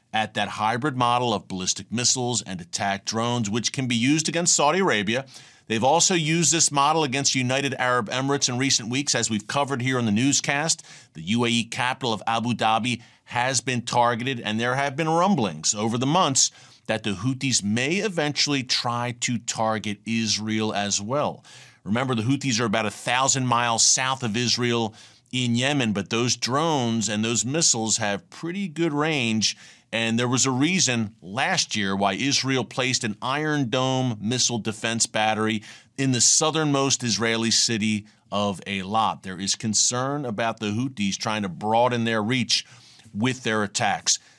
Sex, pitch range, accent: male, 110-135 Hz, American